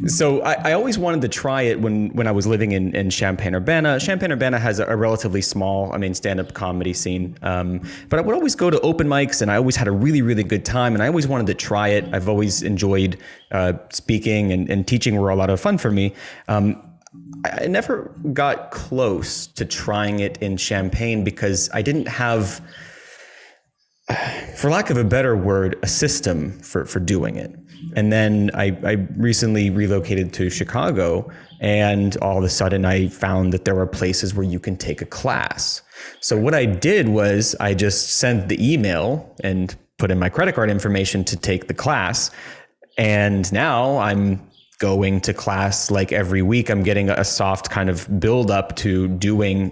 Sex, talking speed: male, 190 wpm